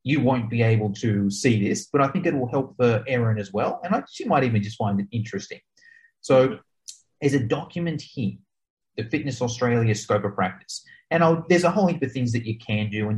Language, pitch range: English, 110-145 Hz